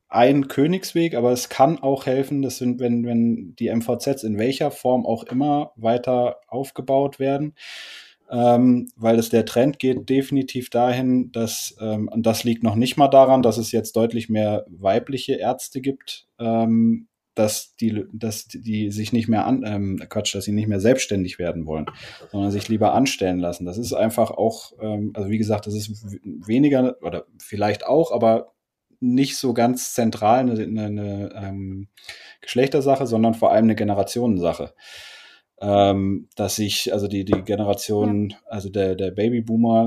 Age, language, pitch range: 20-39, German, 105-125 Hz